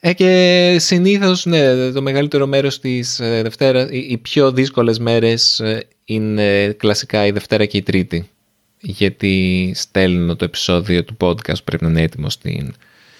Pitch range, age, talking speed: 90-115 Hz, 20-39, 145 wpm